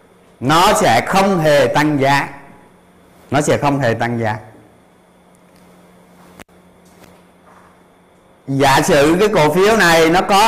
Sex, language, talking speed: male, Vietnamese, 120 wpm